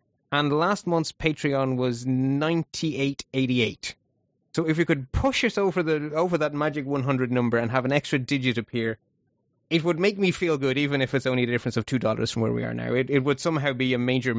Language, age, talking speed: English, 20-39, 230 wpm